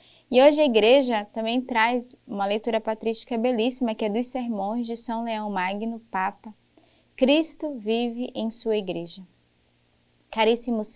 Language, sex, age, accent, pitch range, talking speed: Portuguese, female, 10-29, Brazilian, 195-240 Hz, 135 wpm